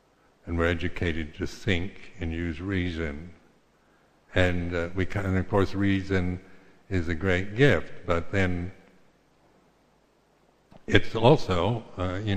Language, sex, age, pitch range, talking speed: English, male, 60-79, 80-95 Hz, 125 wpm